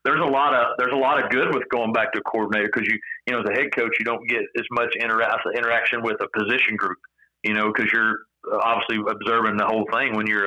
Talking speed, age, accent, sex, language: 260 wpm, 40-59, American, male, English